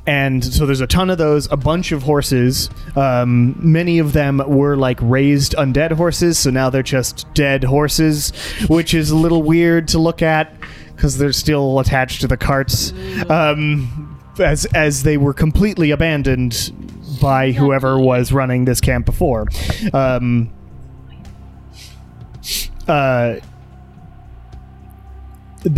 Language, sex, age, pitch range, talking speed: English, male, 30-49, 120-150 Hz, 135 wpm